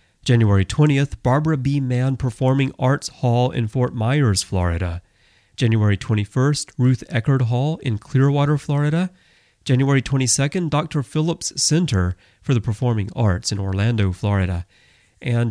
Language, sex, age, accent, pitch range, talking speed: English, male, 30-49, American, 105-140 Hz, 130 wpm